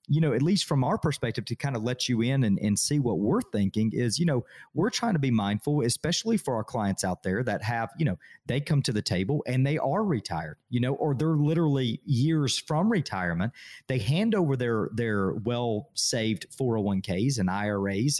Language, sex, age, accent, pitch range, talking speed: English, male, 40-59, American, 110-150 Hz, 210 wpm